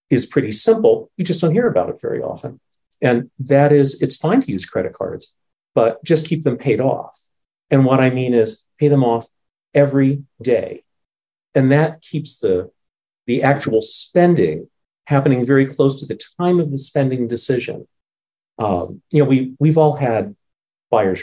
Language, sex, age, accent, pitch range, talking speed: English, male, 40-59, American, 115-150 Hz, 170 wpm